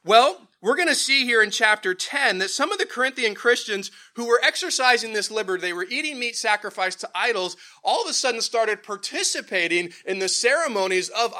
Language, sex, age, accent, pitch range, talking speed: English, male, 30-49, American, 160-215 Hz, 195 wpm